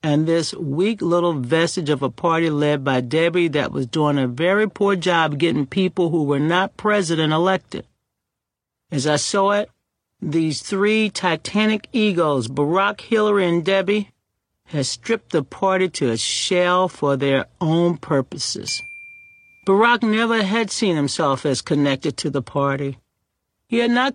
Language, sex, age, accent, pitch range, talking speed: English, male, 60-79, American, 145-200 Hz, 150 wpm